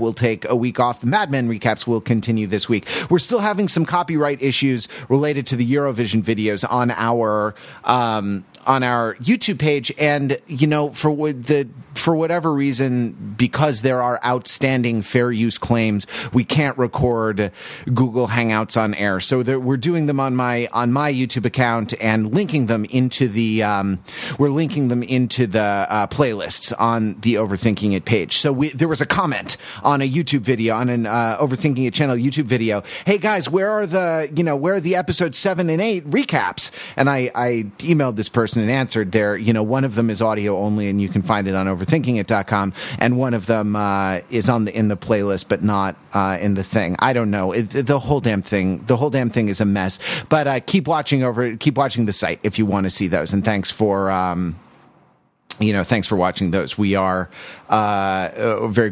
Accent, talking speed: American, 205 wpm